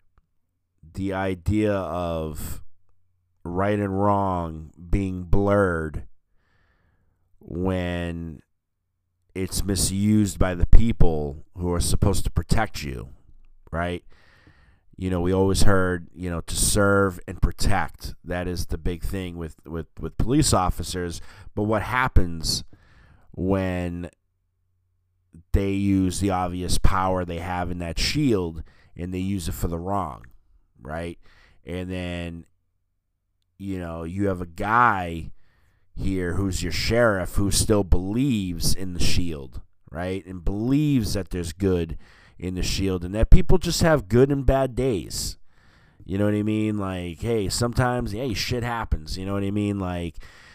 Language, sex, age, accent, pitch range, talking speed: English, male, 30-49, American, 85-100 Hz, 140 wpm